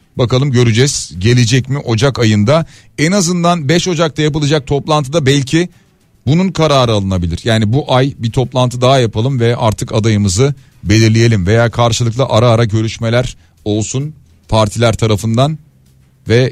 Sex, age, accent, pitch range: male, 40-59, native, 105-140 Hz